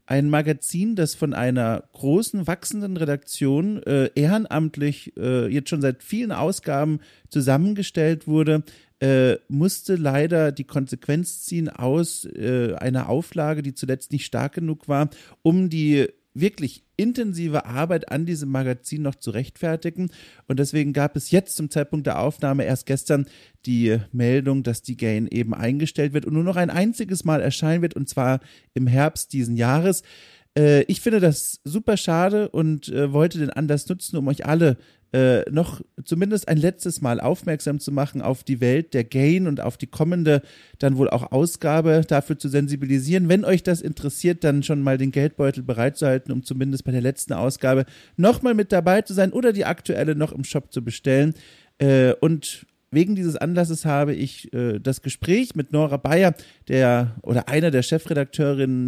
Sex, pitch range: male, 135-165 Hz